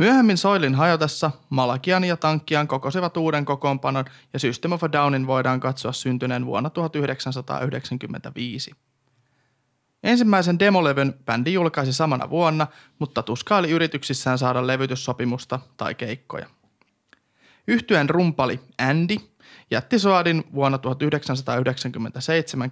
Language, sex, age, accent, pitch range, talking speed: Finnish, male, 30-49, native, 130-165 Hz, 105 wpm